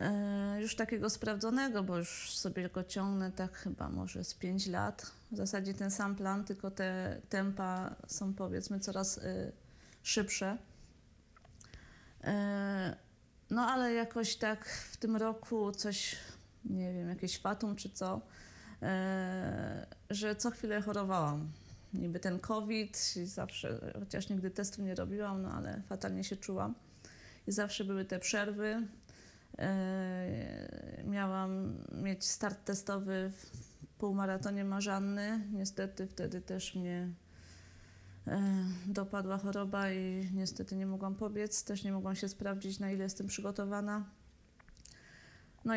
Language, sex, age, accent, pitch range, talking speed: Polish, female, 30-49, native, 185-205 Hz, 125 wpm